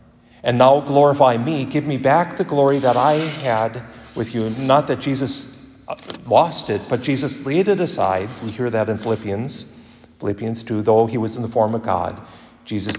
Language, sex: English, male